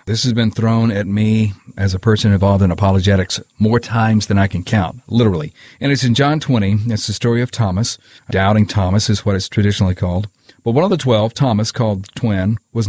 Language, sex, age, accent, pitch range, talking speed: English, male, 40-59, American, 100-125 Hz, 215 wpm